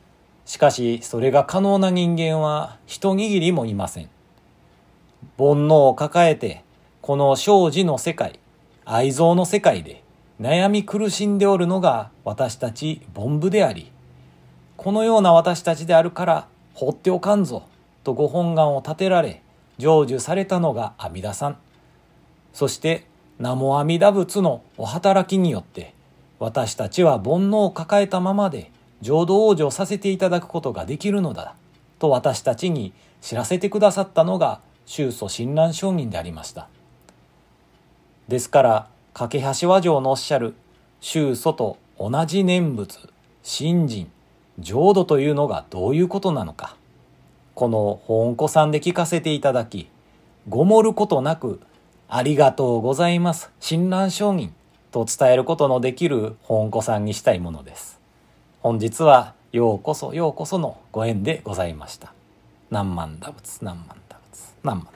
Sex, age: male, 40-59